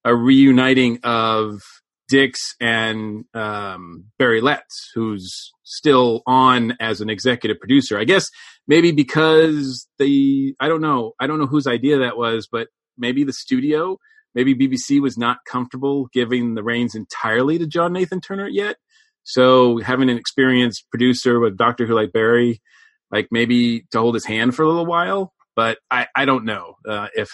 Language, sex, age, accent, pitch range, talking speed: English, male, 40-59, American, 115-150 Hz, 165 wpm